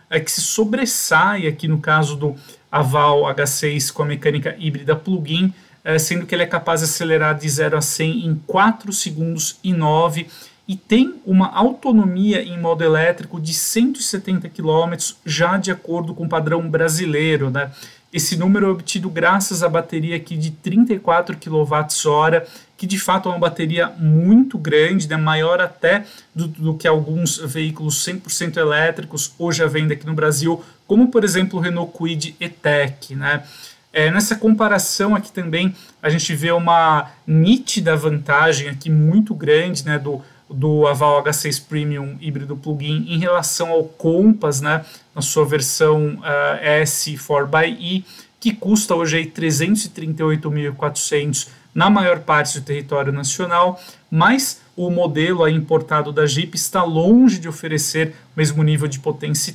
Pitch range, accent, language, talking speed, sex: 150-185 Hz, Brazilian, Portuguese, 155 wpm, male